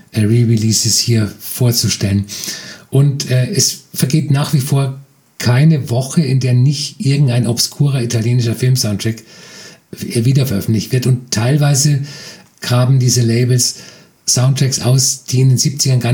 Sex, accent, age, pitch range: male, German, 50-69, 120-140 Hz